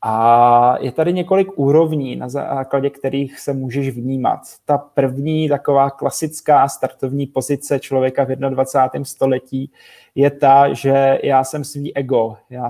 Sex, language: male, Czech